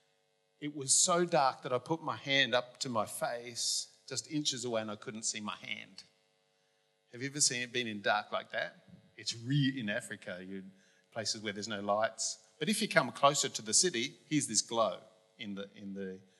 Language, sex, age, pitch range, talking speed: English, male, 50-69, 95-135 Hz, 205 wpm